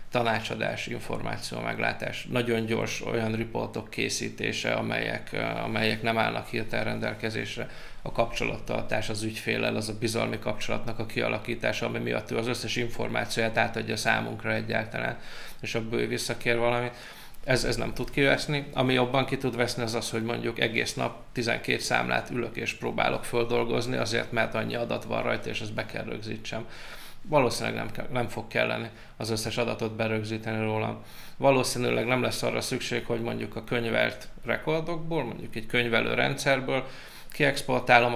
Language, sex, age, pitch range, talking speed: Hungarian, male, 20-39, 110-120 Hz, 150 wpm